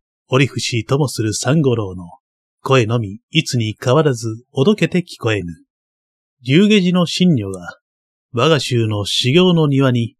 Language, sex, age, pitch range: Japanese, male, 30-49, 105-155 Hz